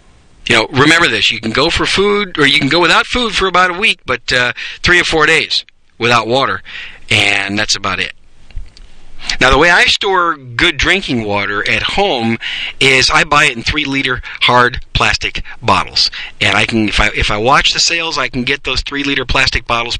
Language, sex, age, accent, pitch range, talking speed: English, male, 40-59, American, 110-175 Hz, 200 wpm